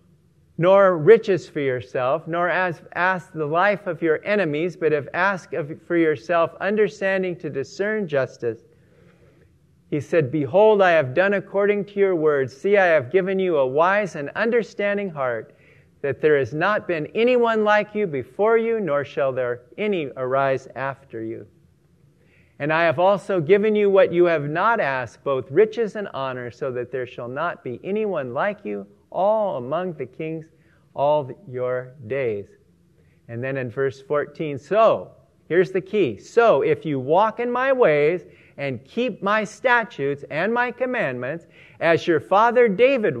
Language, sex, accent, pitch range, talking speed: English, male, American, 140-205 Hz, 160 wpm